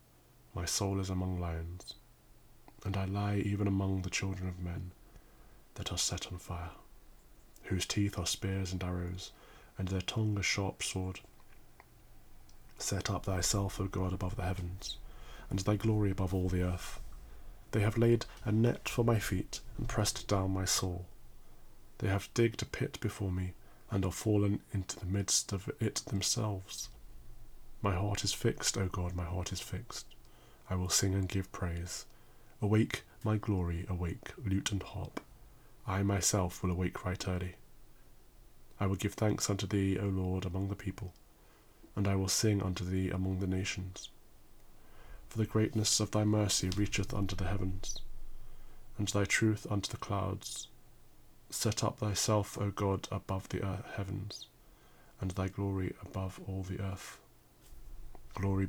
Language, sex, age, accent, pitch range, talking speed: English, male, 30-49, British, 95-105 Hz, 160 wpm